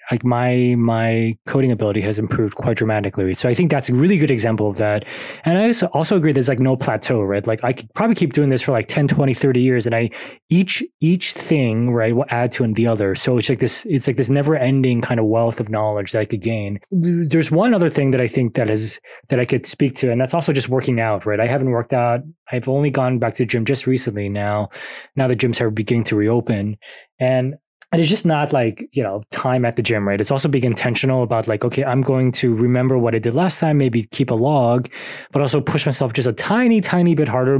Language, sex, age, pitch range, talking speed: English, male, 20-39, 115-140 Hz, 250 wpm